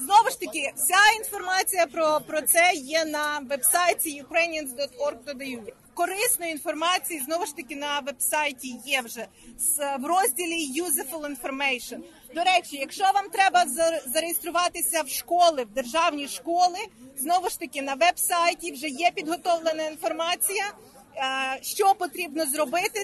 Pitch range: 285-350 Hz